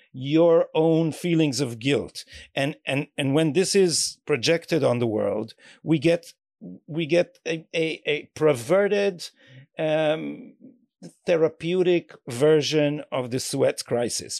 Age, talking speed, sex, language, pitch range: 50-69, 125 wpm, male, English, 140-180 Hz